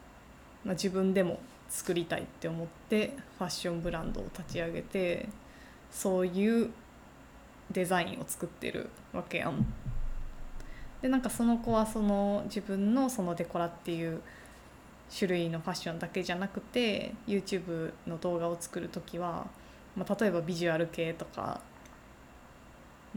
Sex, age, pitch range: female, 20-39, 170-205 Hz